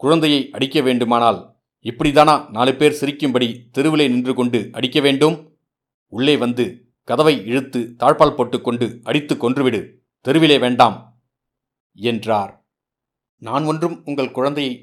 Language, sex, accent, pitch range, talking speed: Tamil, male, native, 120-145 Hz, 115 wpm